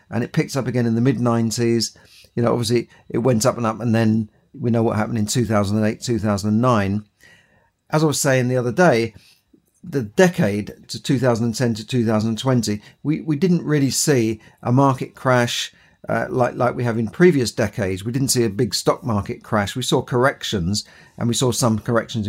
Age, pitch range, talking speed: 50-69, 110-135 Hz, 190 wpm